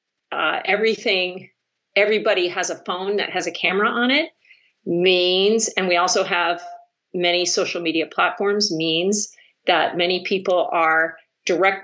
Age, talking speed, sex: 40-59, 135 wpm, female